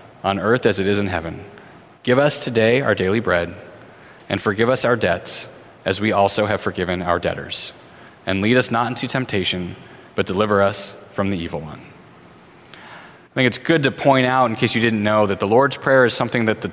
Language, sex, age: English, male, 30-49